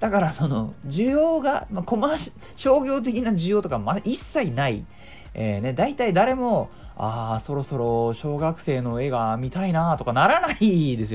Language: Japanese